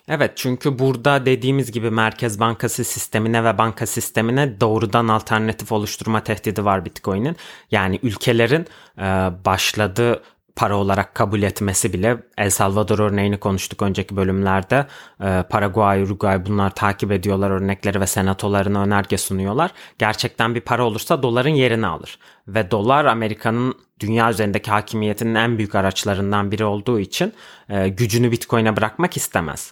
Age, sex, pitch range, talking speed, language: 30-49, male, 105-125 Hz, 130 wpm, Turkish